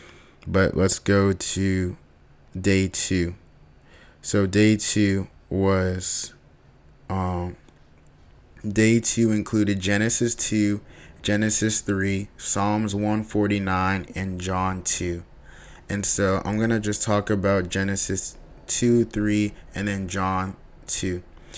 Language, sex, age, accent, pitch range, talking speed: English, male, 20-39, American, 90-100 Hz, 105 wpm